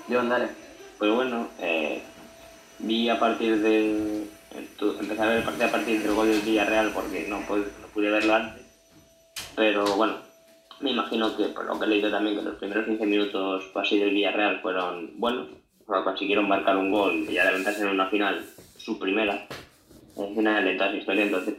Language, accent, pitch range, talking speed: Spanish, Spanish, 100-110 Hz, 185 wpm